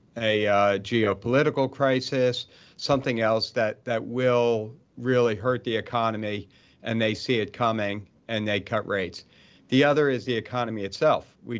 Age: 50-69